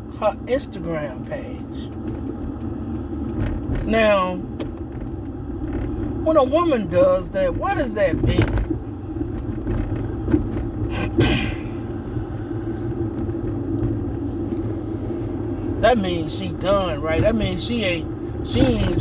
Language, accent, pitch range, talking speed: English, American, 110-160 Hz, 75 wpm